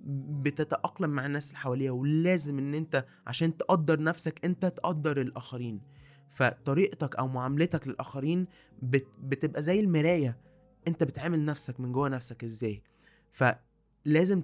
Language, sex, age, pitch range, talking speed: Arabic, male, 20-39, 130-160 Hz, 120 wpm